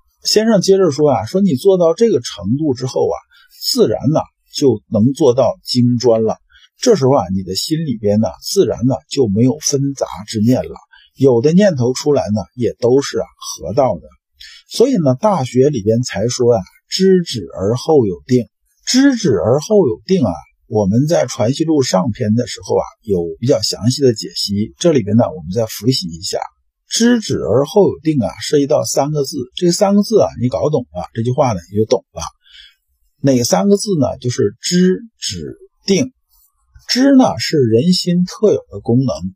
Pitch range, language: 115-190 Hz, Chinese